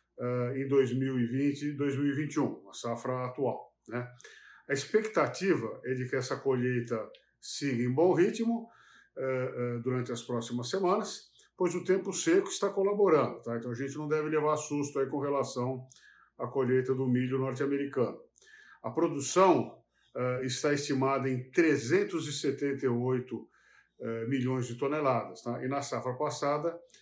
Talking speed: 125 wpm